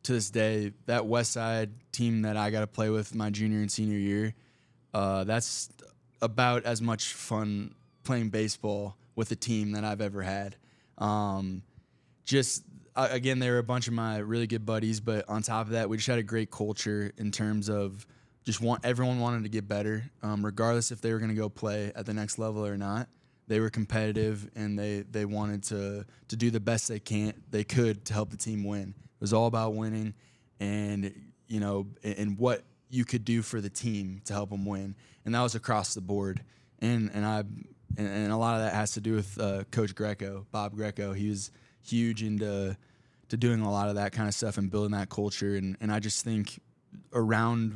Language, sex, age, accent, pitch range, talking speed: English, male, 20-39, American, 105-115 Hz, 210 wpm